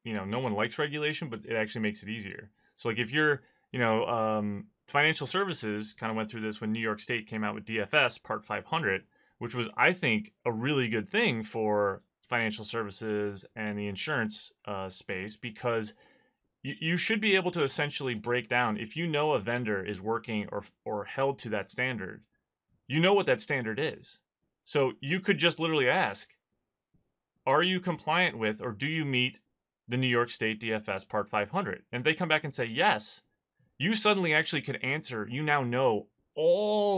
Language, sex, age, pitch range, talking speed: English, male, 30-49, 110-155 Hz, 195 wpm